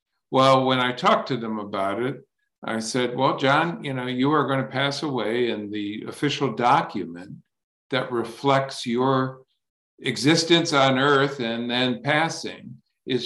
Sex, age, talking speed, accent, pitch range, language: male, 50-69, 155 wpm, American, 120-140 Hz, Spanish